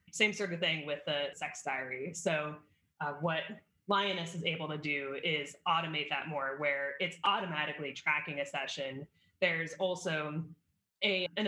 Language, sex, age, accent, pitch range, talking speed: English, female, 20-39, American, 145-175 Hz, 150 wpm